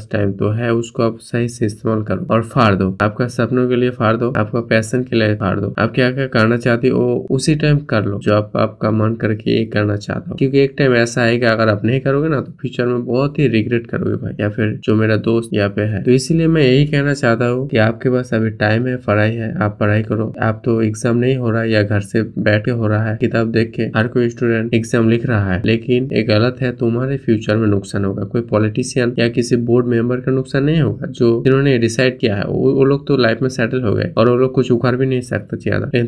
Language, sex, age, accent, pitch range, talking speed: Hindi, male, 20-39, native, 110-125 Hz, 250 wpm